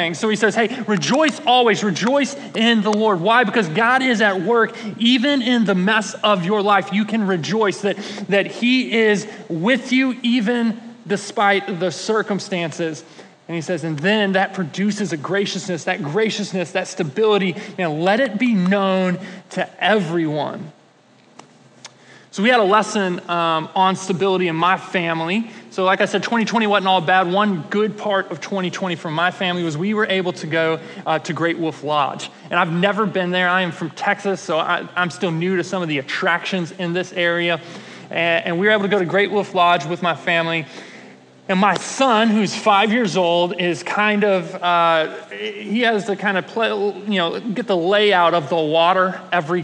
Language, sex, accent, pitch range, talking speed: English, male, American, 175-215 Hz, 190 wpm